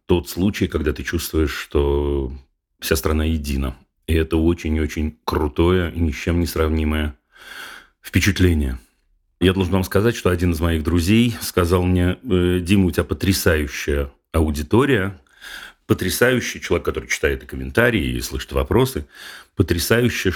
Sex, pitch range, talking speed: male, 80-95 Hz, 135 wpm